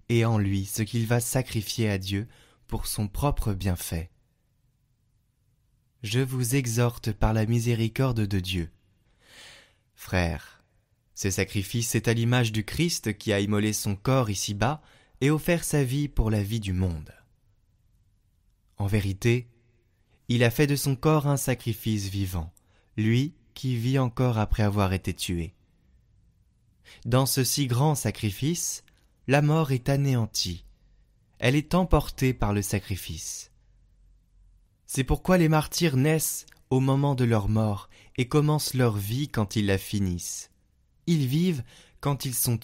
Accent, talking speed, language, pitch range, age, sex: French, 140 wpm, French, 100-130 Hz, 20-39, male